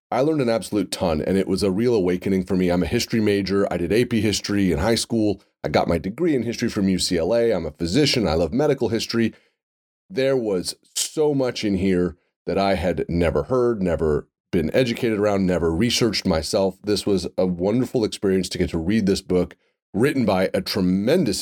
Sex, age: male, 30-49